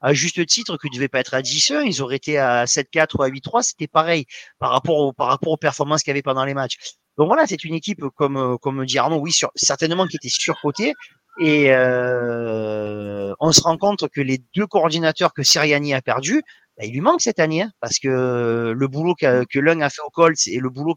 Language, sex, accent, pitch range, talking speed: French, male, French, 125-165 Hz, 240 wpm